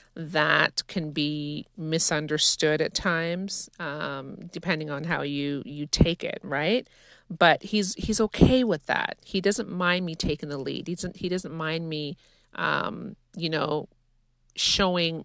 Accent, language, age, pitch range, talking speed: American, English, 40-59, 155-190 Hz, 150 wpm